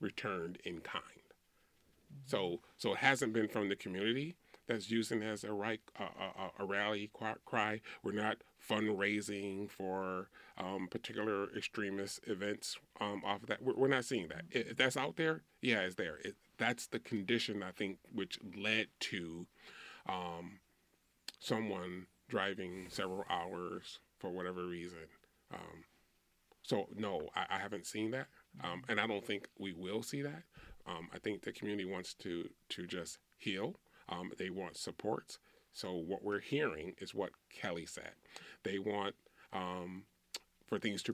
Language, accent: English, American